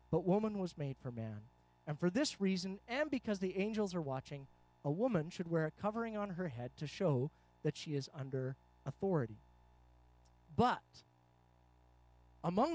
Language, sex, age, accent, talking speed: English, male, 40-59, American, 160 wpm